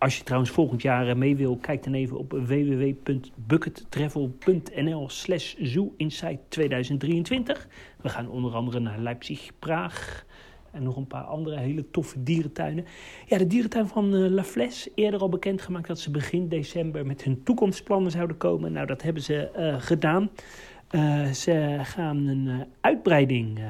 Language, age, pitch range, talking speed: Dutch, 40-59, 130-170 Hz, 145 wpm